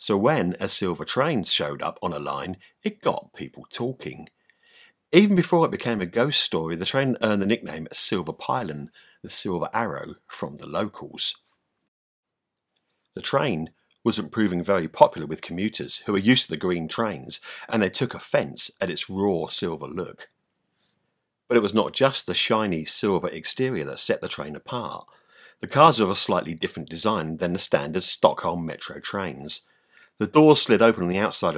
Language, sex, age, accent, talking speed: English, male, 50-69, British, 175 wpm